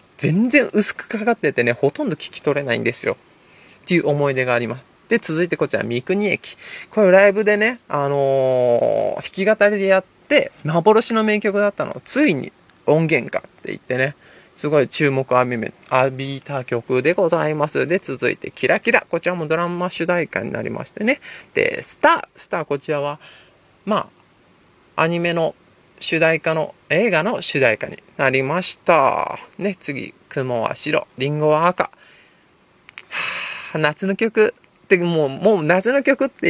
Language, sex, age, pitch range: Japanese, male, 20-39, 140-195 Hz